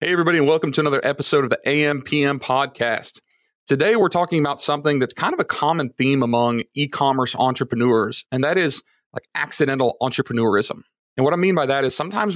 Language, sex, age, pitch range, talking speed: English, male, 30-49, 120-140 Hz, 200 wpm